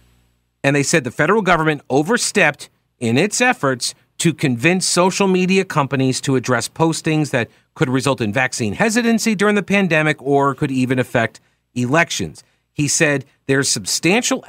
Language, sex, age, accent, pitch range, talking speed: English, male, 50-69, American, 125-180 Hz, 150 wpm